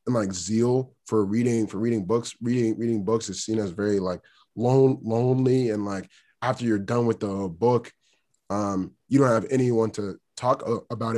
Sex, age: male, 20-39